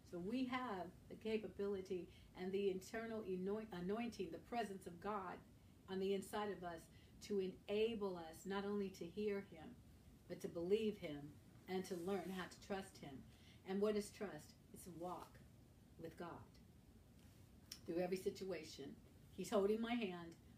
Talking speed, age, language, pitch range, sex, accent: 155 wpm, 50-69, English, 170-205 Hz, female, American